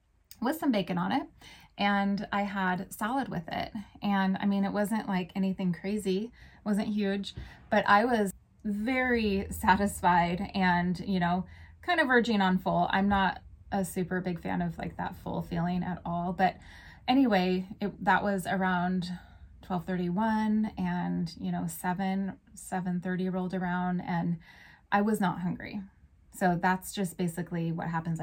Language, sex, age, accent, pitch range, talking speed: English, female, 20-39, American, 175-200 Hz, 160 wpm